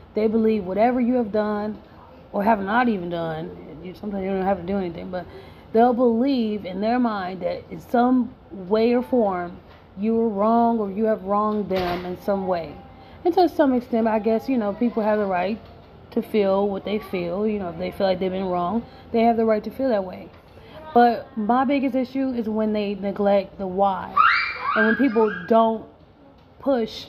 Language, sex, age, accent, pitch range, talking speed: English, female, 30-49, American, 195-240 Hz, 200 wpm